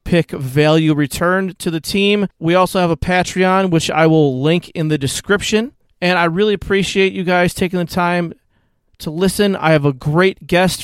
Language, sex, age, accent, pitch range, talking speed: English, male, 30-49, American, 160-195 Hz, 185 wpm